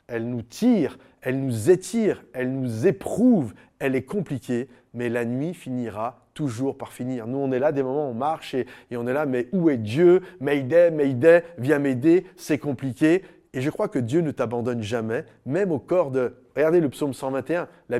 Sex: male